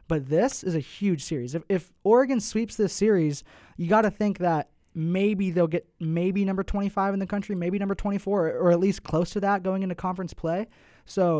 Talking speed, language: 215 wpm, English